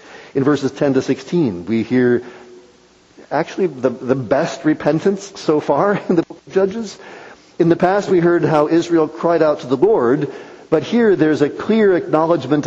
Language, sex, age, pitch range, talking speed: English, male, 50-69, 130-170 Hz, 175 wpm